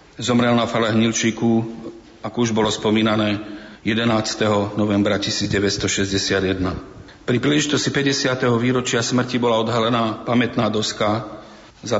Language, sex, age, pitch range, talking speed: Slovak, male, 40-59, 110-120 Hz, 105 wpm